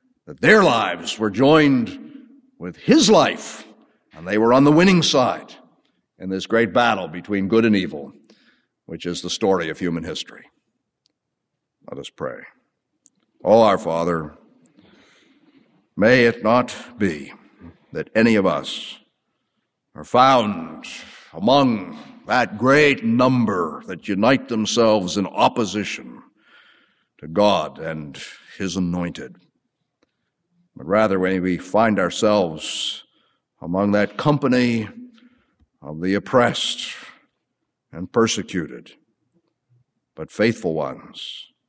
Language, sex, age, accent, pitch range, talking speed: English, male, 60-79, American, 90-130 Hz, 110 wpm